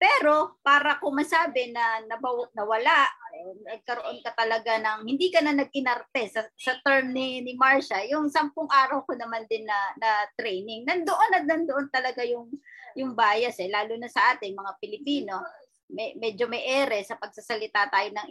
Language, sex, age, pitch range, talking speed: Filipino, male, 20-39, 225-295 Hz, 170 wpm